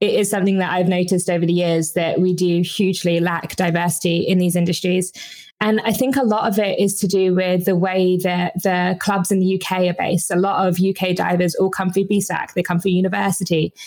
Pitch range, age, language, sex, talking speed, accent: 175-195 Hz, 20-39, English, female, 225 wpm, British